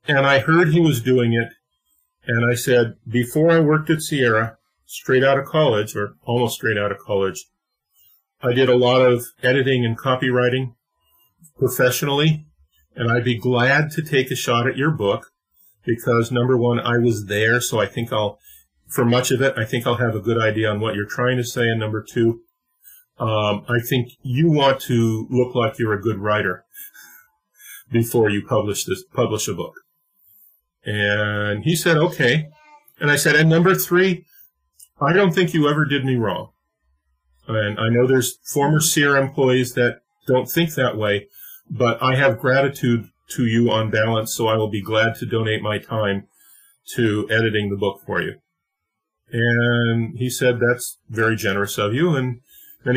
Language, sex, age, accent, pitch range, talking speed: English, male, 40-59, American, 110-135 Hz, 180 wpm